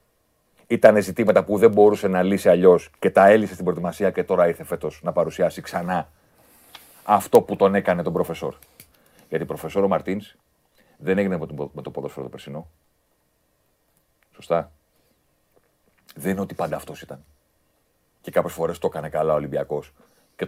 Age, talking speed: 40-59, 160 wpm